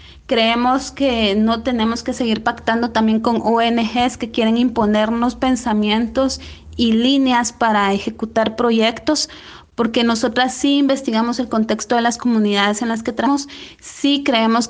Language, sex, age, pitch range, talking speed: Spanish, female, 30-49, 225-260 Hz, 140 wpm